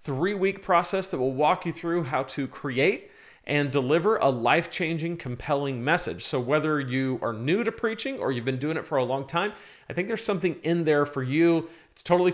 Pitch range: 130-175 Hz